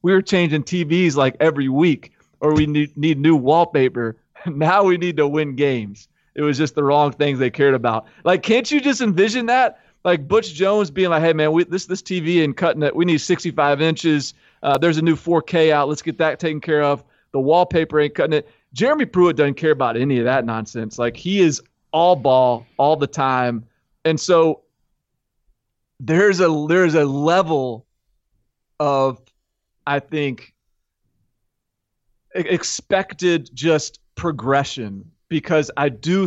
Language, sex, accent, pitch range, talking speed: English, male, American, 130-170 Hz, 165 wpm